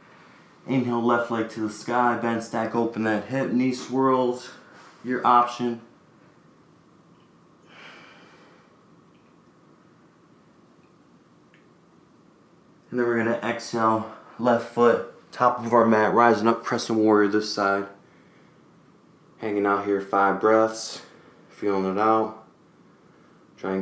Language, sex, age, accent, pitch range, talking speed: English, male, 20-39, American, 100-120 Hz, 110 wpm